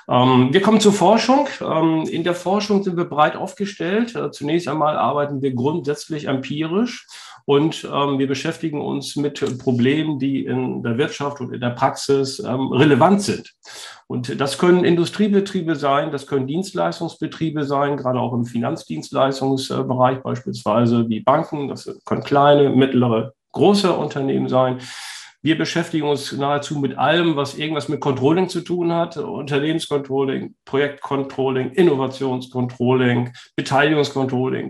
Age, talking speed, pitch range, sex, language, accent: 50-69, 125 wpm, 125-160 Hz, male, German, German